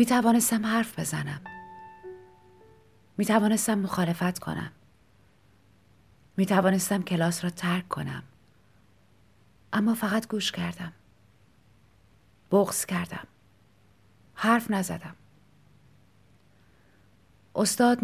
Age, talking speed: 30-49, 75 wpm